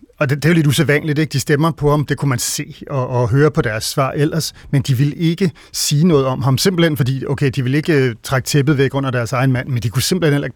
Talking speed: 285 wpm